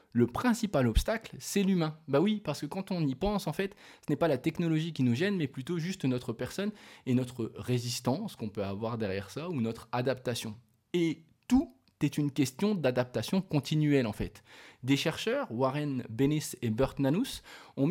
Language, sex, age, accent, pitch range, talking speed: French, male, 20-39, French, 120-185 Hz, 190 wpm